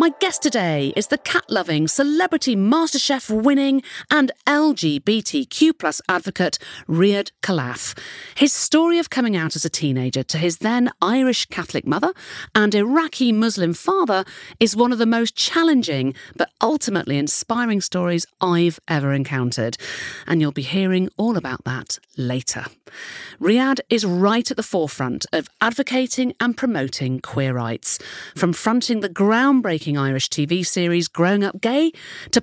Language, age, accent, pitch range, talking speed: English, 40-59, British, 160-255 Hz, 140 wpm